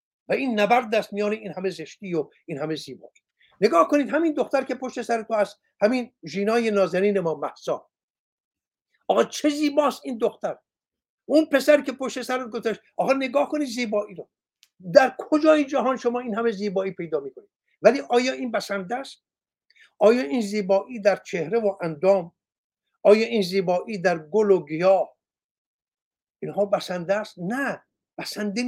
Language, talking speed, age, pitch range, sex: Persian, 155 wpm, 60-79, 195-255 Hz, male